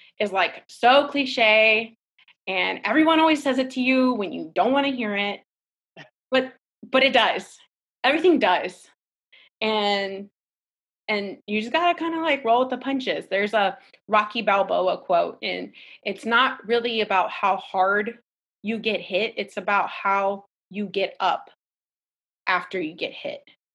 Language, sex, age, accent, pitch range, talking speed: English, female, 20-39, American, 190-235 Hz, 155 wpm